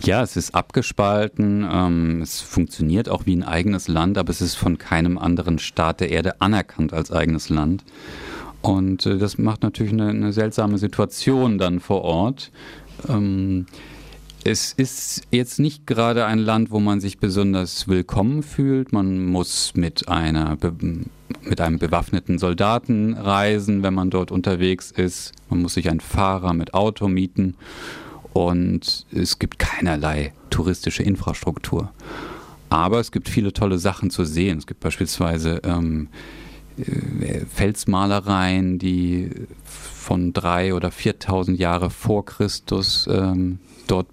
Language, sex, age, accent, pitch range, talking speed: German, male, 40-59, German, 90-105 Hz, 135 wpm